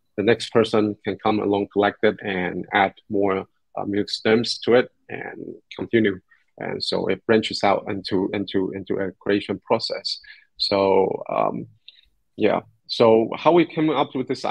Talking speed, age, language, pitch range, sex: 160 wpm, 30-49, English, 100-125 Hz, male